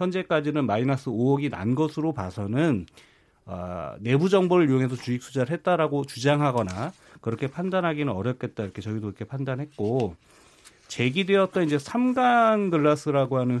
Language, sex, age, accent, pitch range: Korean, male, 40-59, native, 115-170 Hz